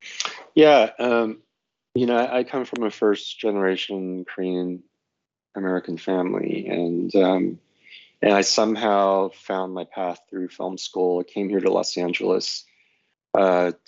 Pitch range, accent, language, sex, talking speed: 90-105 Hz, American, English, male, 130 wpm